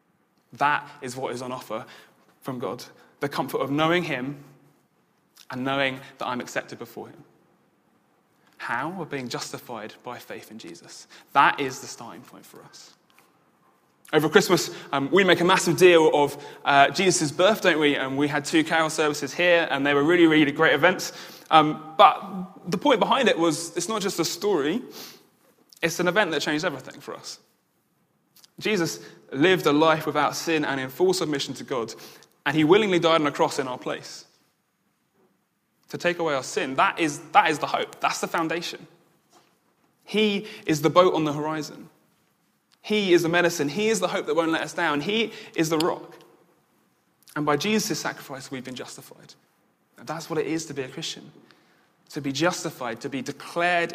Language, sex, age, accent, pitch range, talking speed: English, male, 20-39, British, 145-175 Hz, 185 wpm